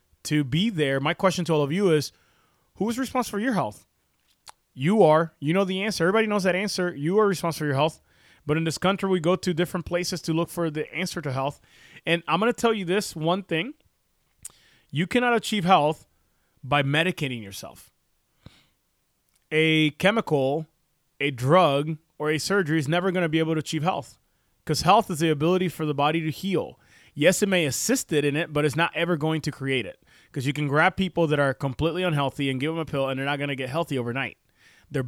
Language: English